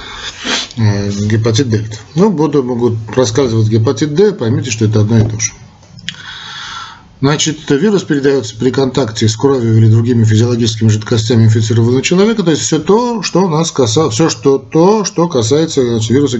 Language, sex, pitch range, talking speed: Russian, male, 110-140 Hz, 145 wpm